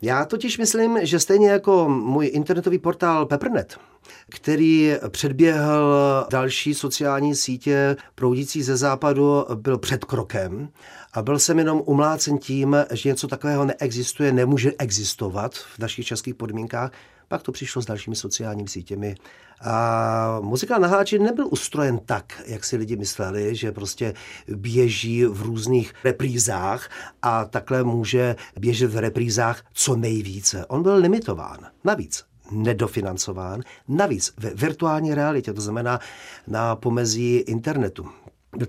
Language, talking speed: Czech, 130 wpm